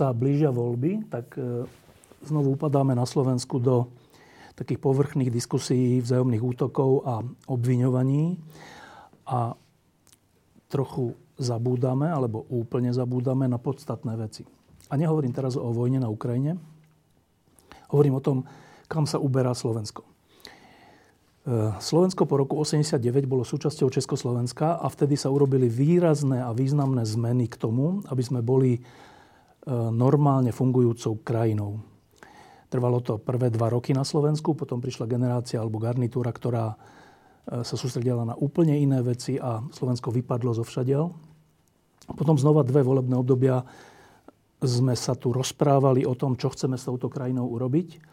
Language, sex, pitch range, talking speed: Slovak, male, 125-145 Hz, 125 wpm